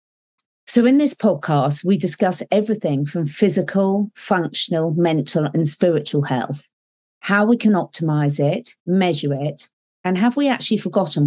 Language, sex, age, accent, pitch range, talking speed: English, female, 40-59, British, 145-195 Hz, 140 wpm